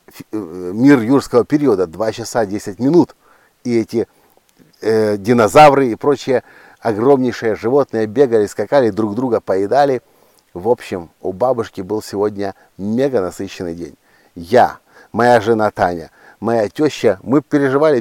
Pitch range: 115-155 Hz